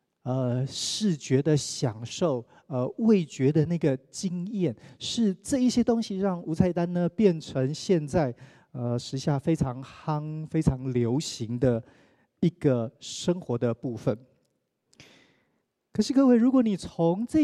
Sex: male